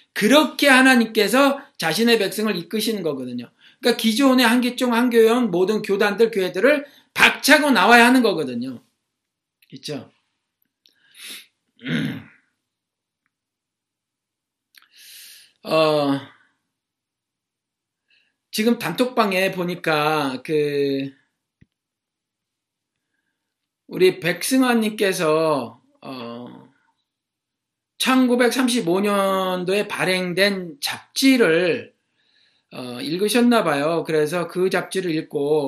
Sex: male